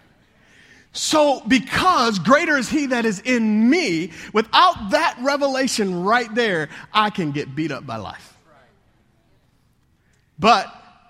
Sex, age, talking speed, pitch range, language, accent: male, 40-59, 120 wpm, 150-210 Hz, English, American